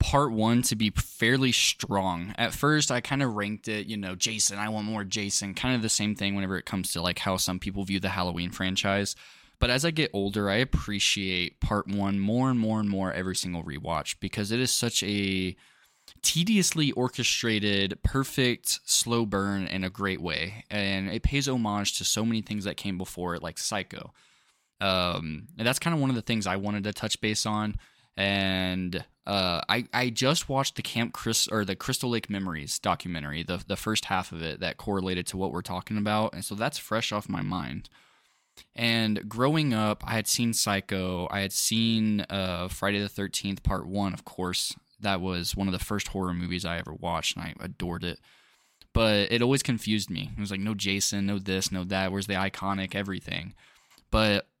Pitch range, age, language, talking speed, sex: 95-115 Hz, 10-29, English, 200 wpm, male